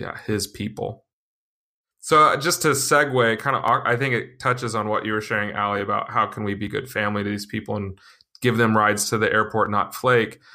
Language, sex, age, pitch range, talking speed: English, male, 20-39, 100-120 Hz, 215 wpm